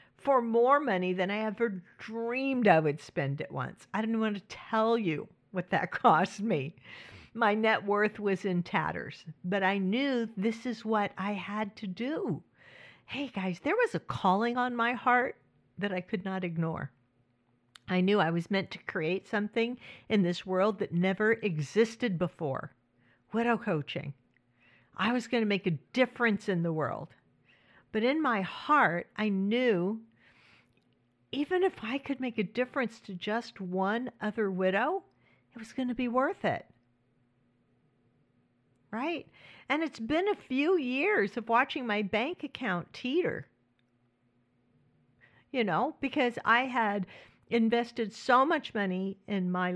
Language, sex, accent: English, female, American